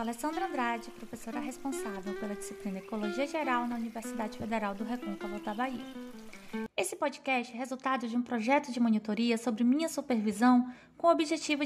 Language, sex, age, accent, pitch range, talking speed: Portuguese, female, 20-39, Brazilian, 235-315 Hz, 160 wpm